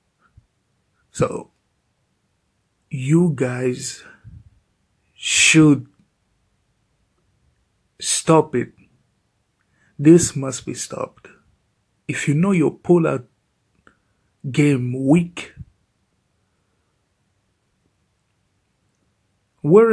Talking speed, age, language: 55 wpm, 50-69, English